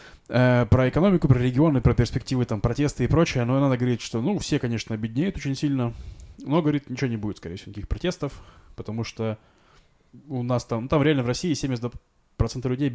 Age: 20-39